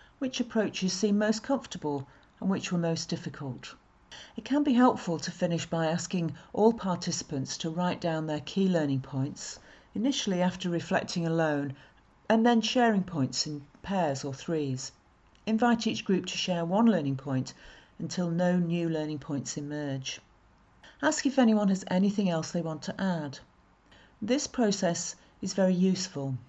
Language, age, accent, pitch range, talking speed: English, 50-69, British, 145-195 Hz, 155 wpm